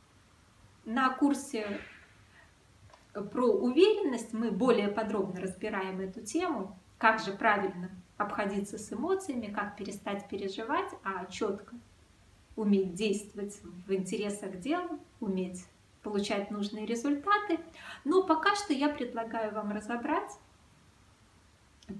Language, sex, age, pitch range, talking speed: Russian, female, 20-39, 200-275 Hz, 100 wpm